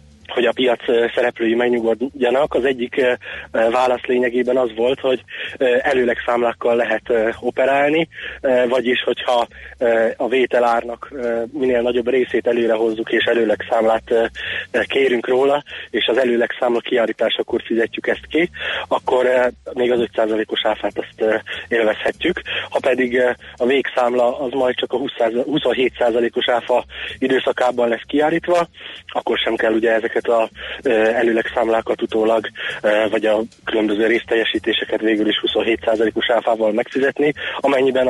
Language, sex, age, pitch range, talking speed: Hungarian, male, 20-39, 115-130 Hz, 120 wpm